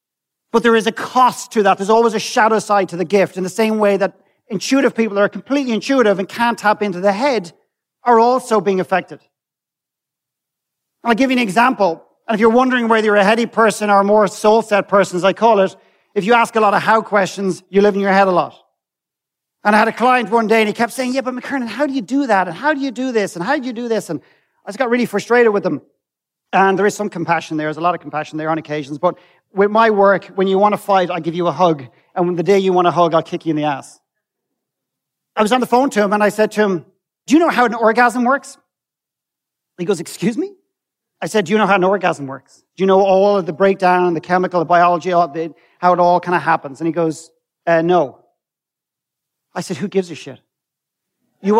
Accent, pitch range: Irish, 180-230 Hz